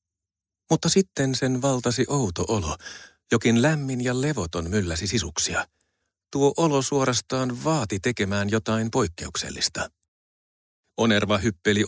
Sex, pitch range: male, 95-135 Hz